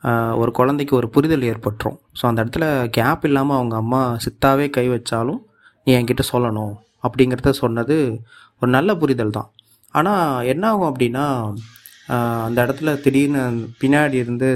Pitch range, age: 125-145 Hz, 30-49